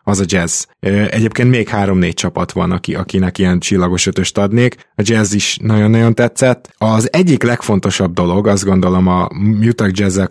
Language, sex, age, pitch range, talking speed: Hungarian, male, 20-39, 95-115 Hz, 155 wpm